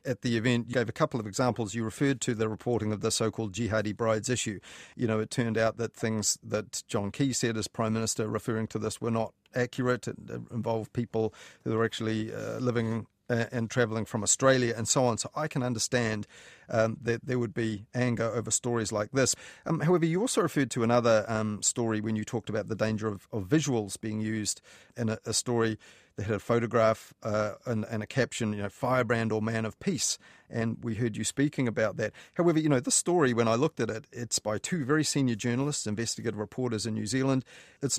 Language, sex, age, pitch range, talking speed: English, male, 40-59, 110-130 Hz, 215 wpm